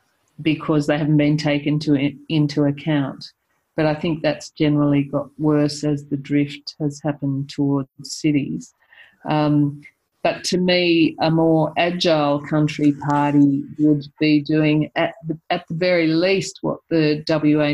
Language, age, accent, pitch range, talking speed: English, 40-59, Australian, 145-165 Hz, 140 wpm